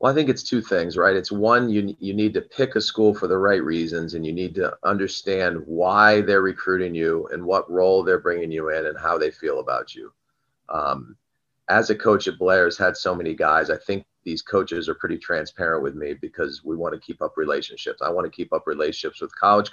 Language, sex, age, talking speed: English, male, 30-49, 230 wpm